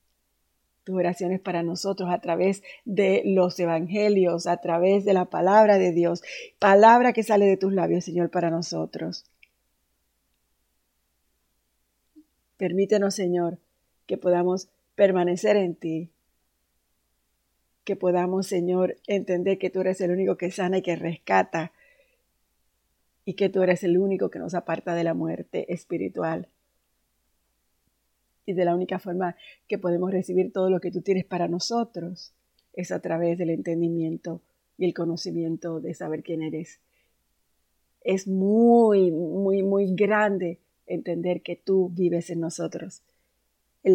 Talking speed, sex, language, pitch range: 130 wpm, female, Spanish, 165-190 Hz